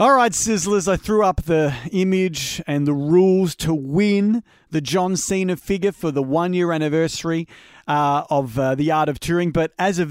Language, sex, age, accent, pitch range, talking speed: English, male, 40-59, Australian, 140-175 Hz, 185 wpm